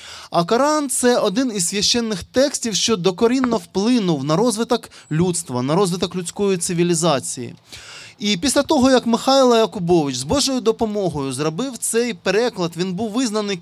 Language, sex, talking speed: Ukrainian, male, 145 wpm